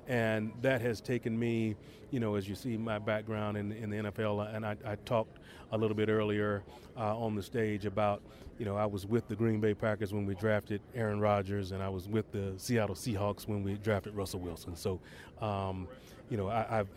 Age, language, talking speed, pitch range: 30-49, English, 210 wpm, 105-120 Hz